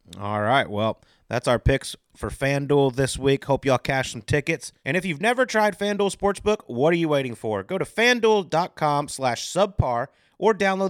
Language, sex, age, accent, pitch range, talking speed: English, male, 30-49, American, 120-175 Hz, 185 wpm